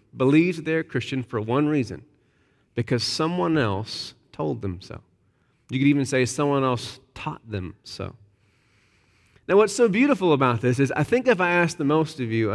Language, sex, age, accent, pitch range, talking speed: English, male, 30-49, American, 125-175 Hz, 180 wpm